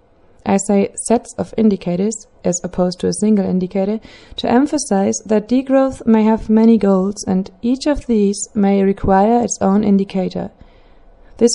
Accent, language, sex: German, English, female